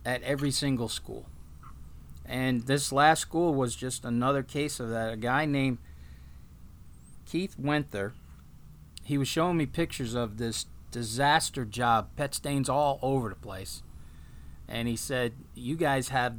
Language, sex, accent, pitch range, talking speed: English, male, American, 110-145 Hz, 145 wpm